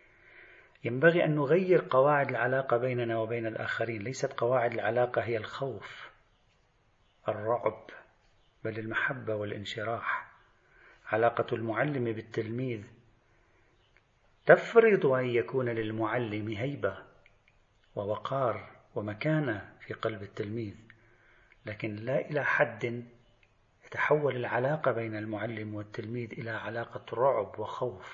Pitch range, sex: 110-130 Hz, male